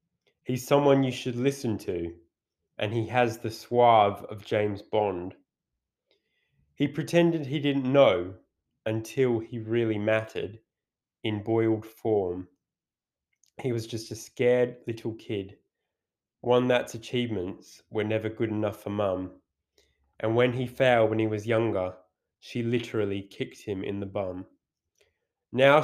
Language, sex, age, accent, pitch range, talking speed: English, male, 20-39, British, 105-125 Hz, 135 wpm